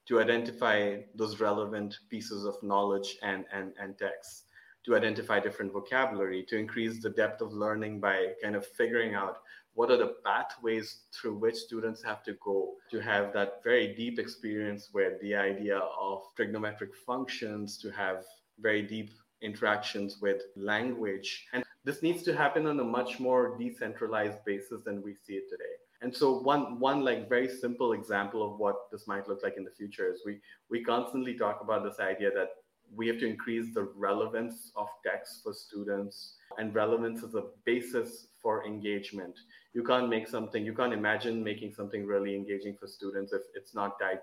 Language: English